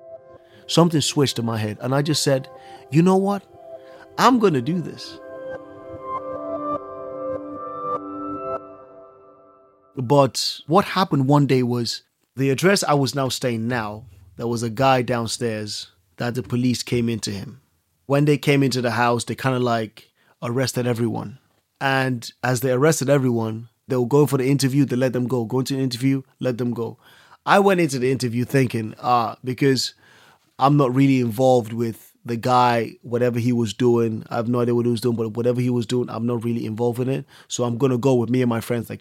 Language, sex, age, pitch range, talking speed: English, male, 30-49, 115-135 Hz, 190 wpm